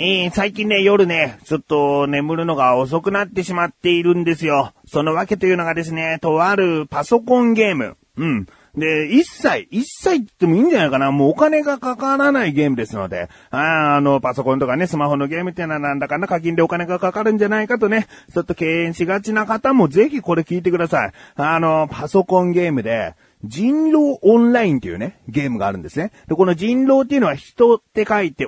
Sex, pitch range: male, 145-220 Hz